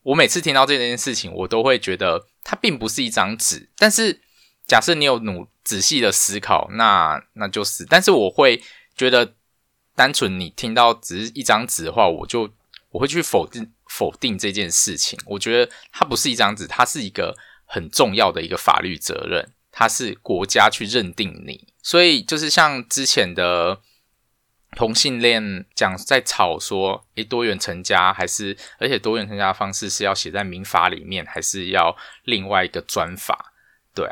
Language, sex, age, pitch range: Chinese, male, 20-39, 100-135 Hz